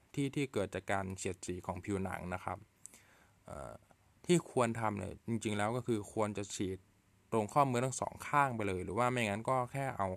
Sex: male